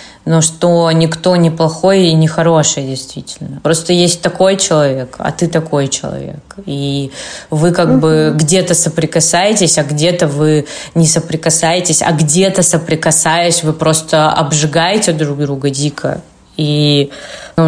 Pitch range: 140-165 Hz